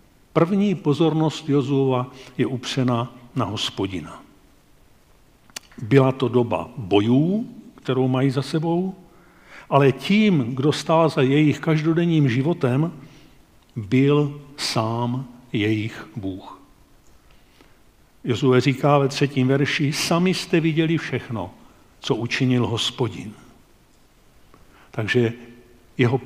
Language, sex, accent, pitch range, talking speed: Czech, male, native, 120-155 Hz, 95 wpm